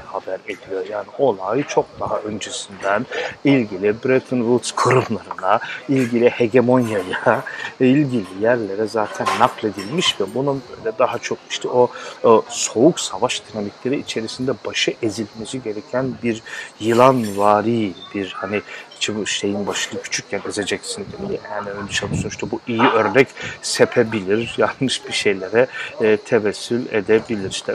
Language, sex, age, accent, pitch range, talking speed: Turkish, male, 40-59, native, 105-120 Hz, 120 wpm